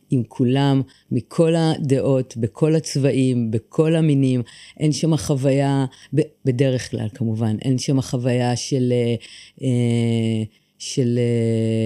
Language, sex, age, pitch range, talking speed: Hebrew, female, 30-49, 120-145 Hz, 95 wpm